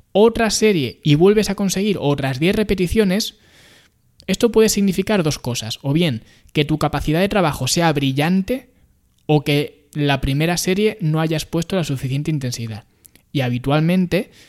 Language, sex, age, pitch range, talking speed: Spanish, male, 20-39, 135-180 Hz, 150 wpm